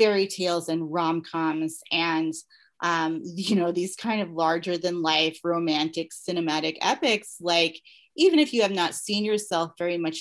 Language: English